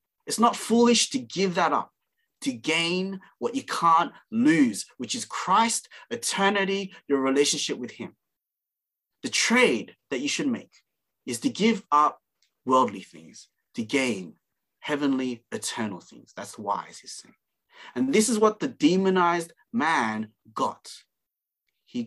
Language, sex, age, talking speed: English, male, 30-49, 140 wpm